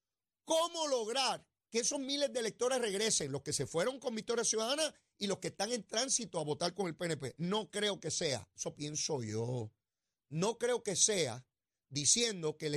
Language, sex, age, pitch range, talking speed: Spanish, male, 30-49, 140-230 Hz, 190 wpm